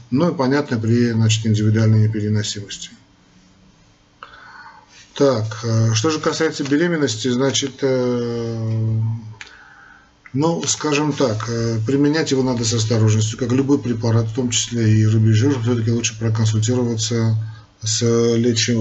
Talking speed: 115 wpm